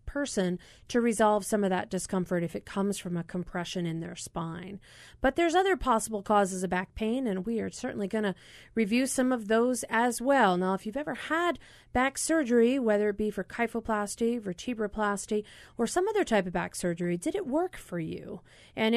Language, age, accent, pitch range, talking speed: English, 40-59, American, 185-240 Hz, 195 wpm